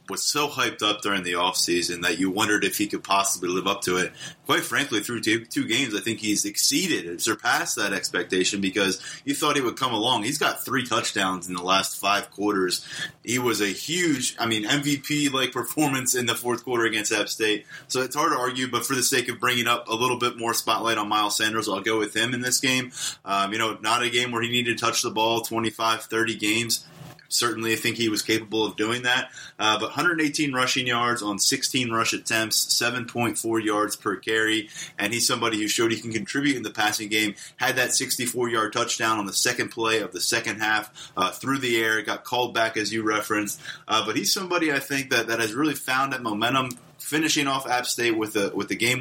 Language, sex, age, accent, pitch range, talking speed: English, male, 20-39, American, 110-125 Hz, 225 wpm